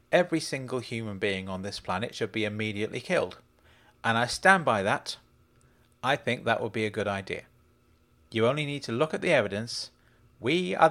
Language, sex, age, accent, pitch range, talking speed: English, male, 40-59, British, 110-140 Hz, 185 wpm